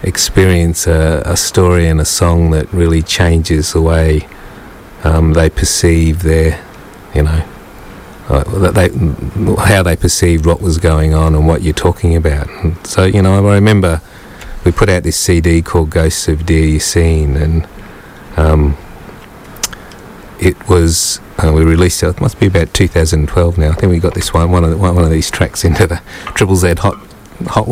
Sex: male